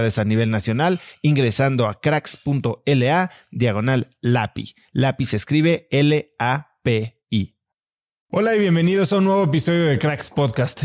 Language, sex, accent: Spanish, male, Mexican